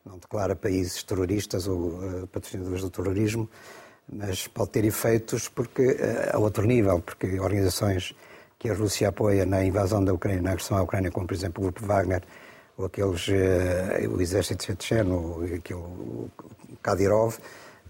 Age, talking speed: 50-69, 165 wpm